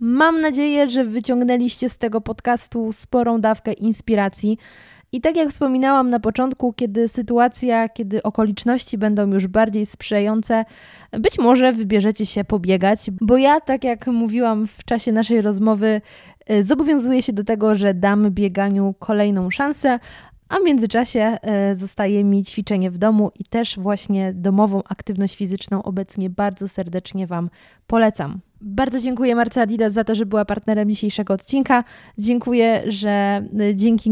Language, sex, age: Polish, female, 20-39